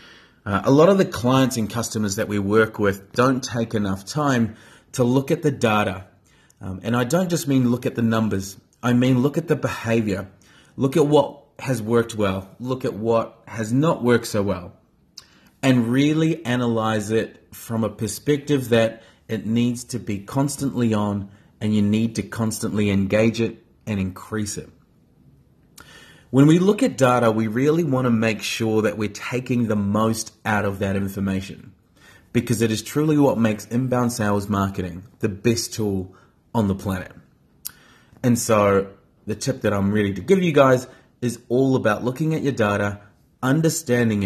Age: 30-49